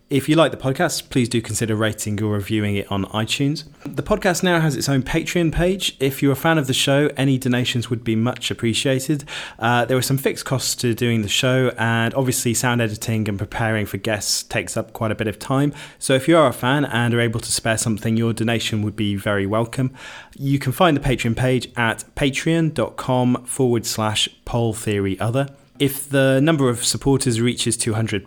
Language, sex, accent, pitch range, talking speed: English, male, British, 110-135 Hz, 210 wpm